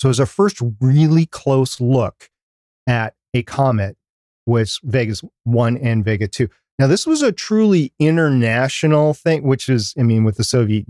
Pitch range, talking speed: 115-140 Hz, 170 wpm